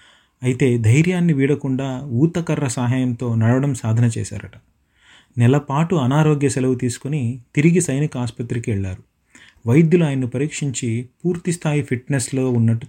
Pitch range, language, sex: 120-150 Hz, Telugu, male